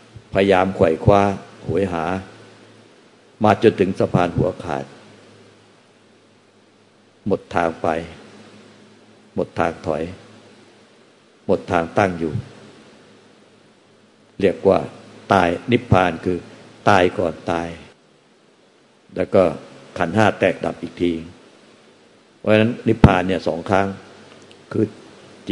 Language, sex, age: Thai, male, 60-79